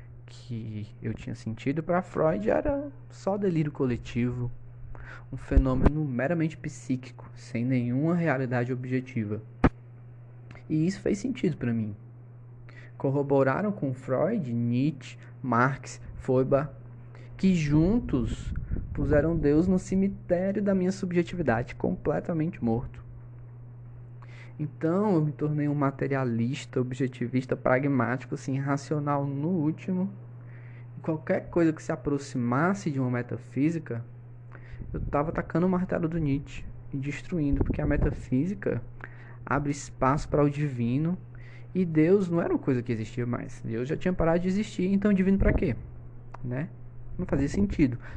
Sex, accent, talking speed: male, Brazilian, 125 wpm